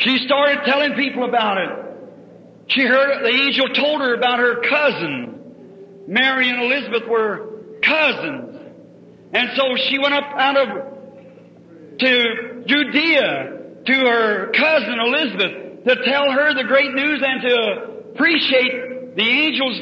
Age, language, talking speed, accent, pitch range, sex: 50-69, English, 135 wpm, American, 245-295 Hz, male